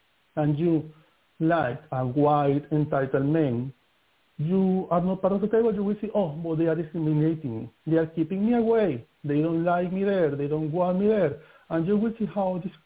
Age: 60-79